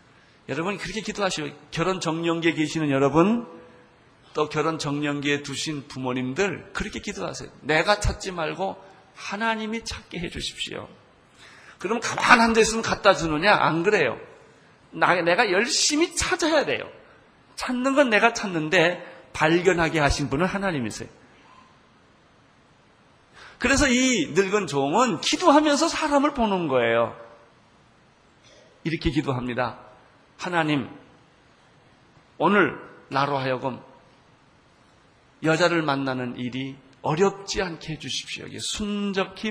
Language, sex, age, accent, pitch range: Korean, male, 40-59, native, 140-210 Hz